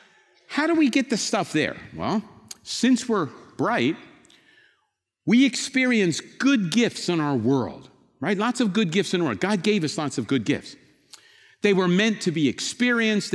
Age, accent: 50-69, American